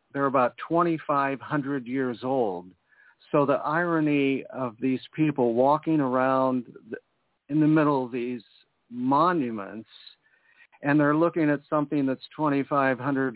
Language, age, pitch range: English, 50-69, 125-155 Hz